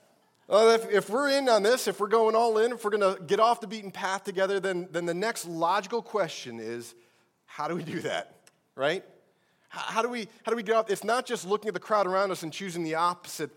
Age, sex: 30-49, male